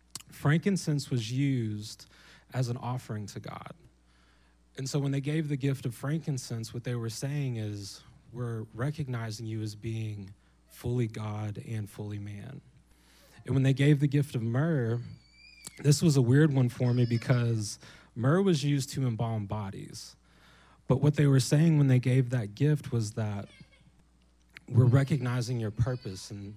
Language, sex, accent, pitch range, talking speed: English, male, American, 110-140 Hz, 160 wpm